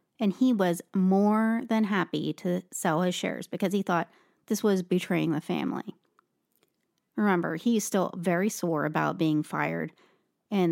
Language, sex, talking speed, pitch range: English, female, 150 wpm, 165-200 Hz